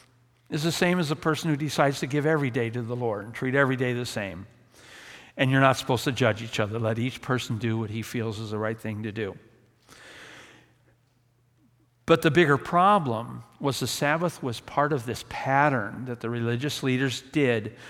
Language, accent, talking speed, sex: English, American, 200 wpm, male